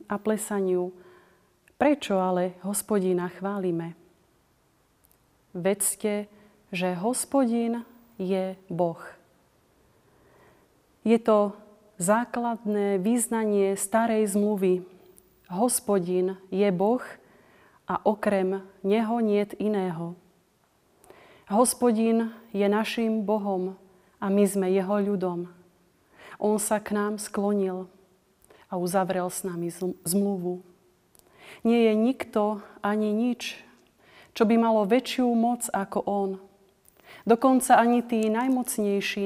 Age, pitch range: 30-49, 185-220 Hz